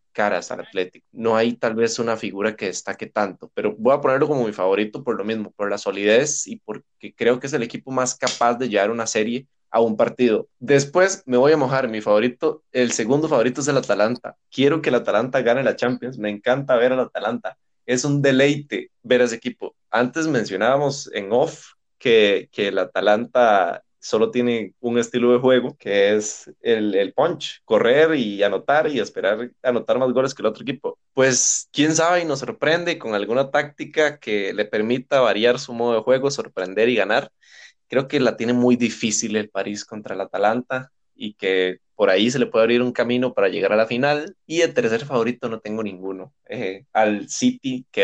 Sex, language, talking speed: male, Spanish, 200 wpm